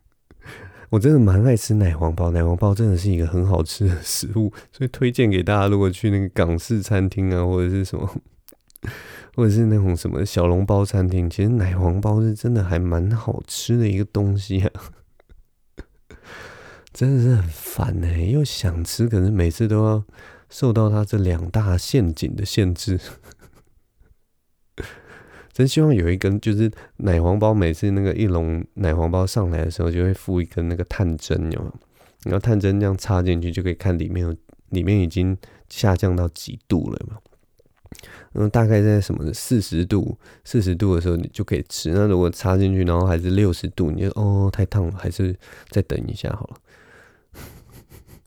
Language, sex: Chinese, male